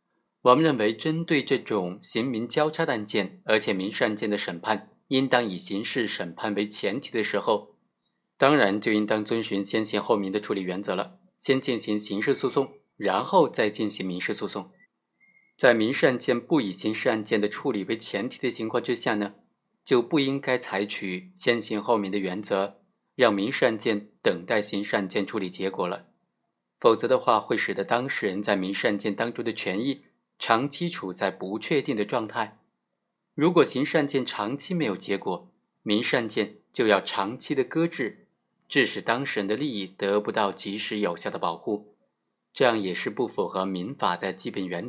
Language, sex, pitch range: Chinese, male, 100-125 Hz